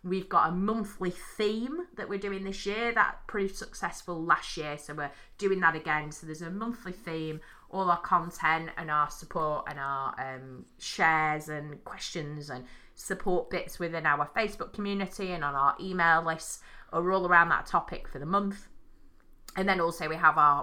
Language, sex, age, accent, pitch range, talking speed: English, female, 30-49, British, 145-185 Hz, 185 wpm